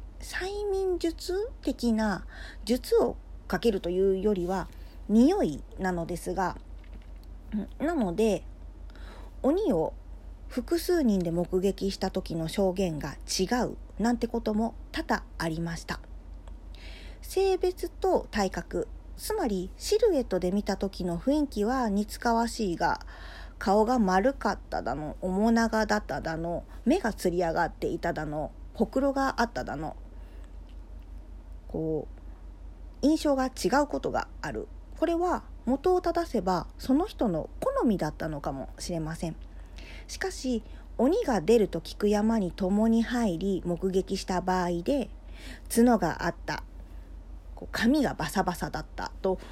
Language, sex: Japanese, female